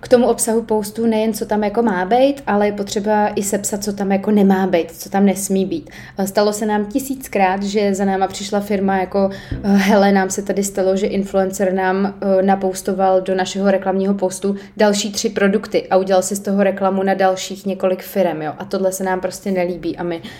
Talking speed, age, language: 200 wpm, 20-39, Czech